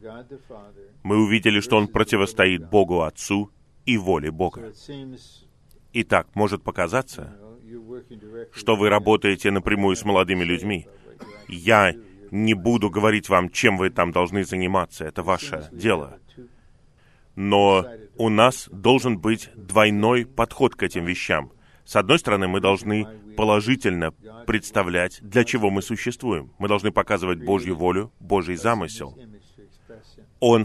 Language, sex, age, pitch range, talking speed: Russian, male, 30-49, 95-115 Hz, 120 wpm